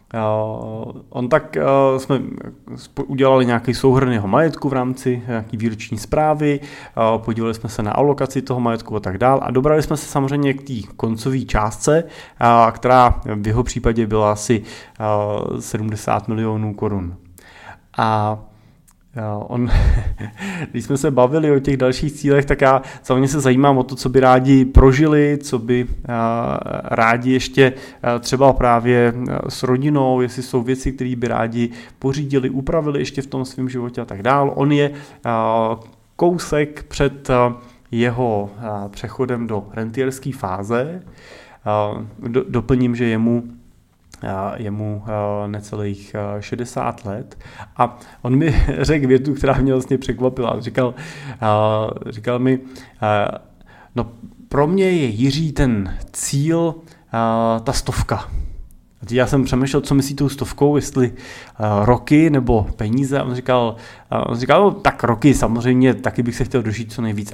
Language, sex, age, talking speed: Czech, male, 30-49, 130 wpm